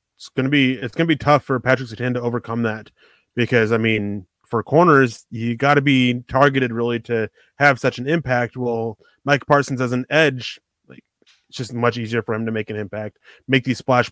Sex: male